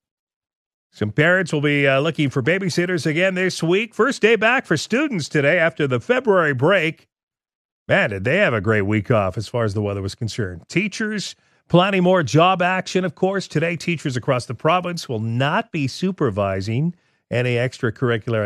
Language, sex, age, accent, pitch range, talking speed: English, male, 40-59, American, 115-155 Hz, 175 wpm